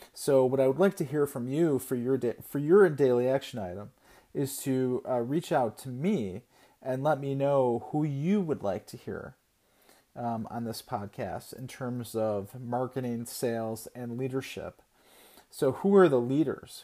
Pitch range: 120-135 Hz